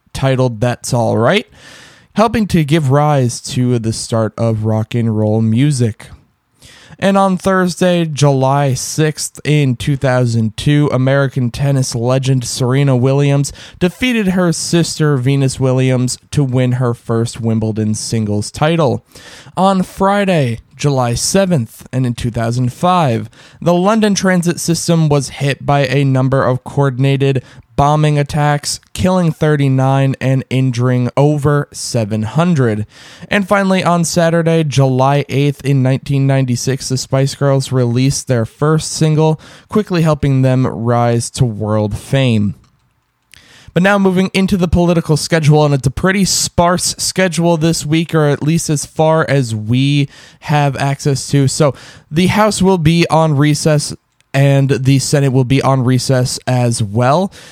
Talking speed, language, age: 135 wpm, English, 20-39